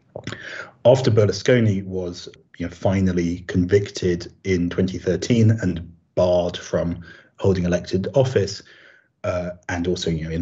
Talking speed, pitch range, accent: 100 wpm, 85-100 Hz, British